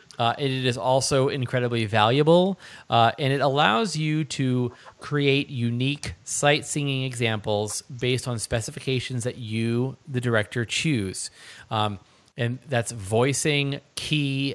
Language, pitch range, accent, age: English, 115-145 Hz, American, 30-49